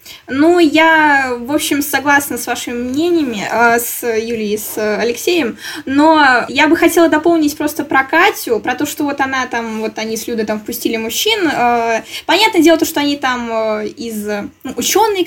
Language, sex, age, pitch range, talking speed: Russian, female, 10-29, 250-335 Hz, 165 wpm